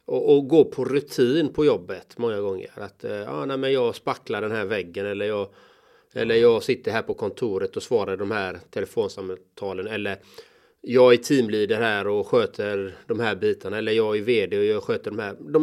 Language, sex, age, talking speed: Swedish, male, 30-49, 195 wpm